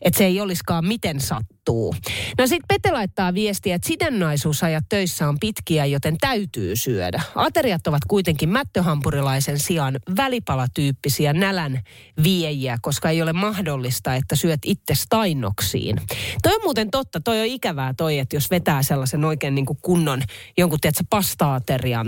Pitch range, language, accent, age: 135-195 Hz, Finnish, native, 30-49